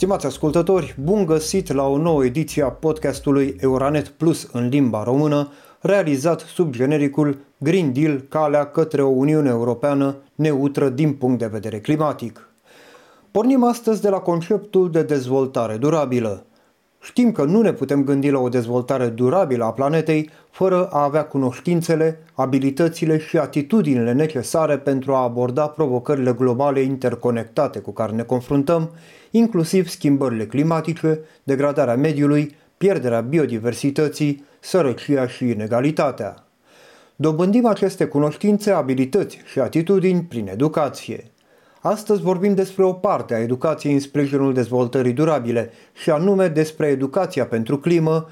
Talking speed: 130 wpm